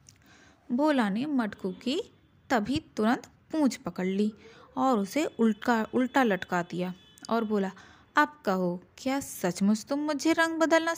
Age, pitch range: 20-39, 215-285 Hz